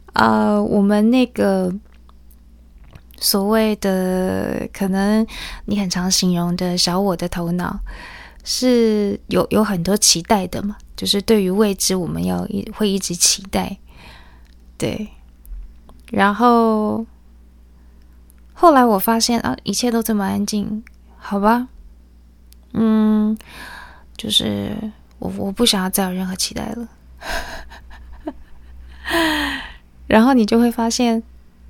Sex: female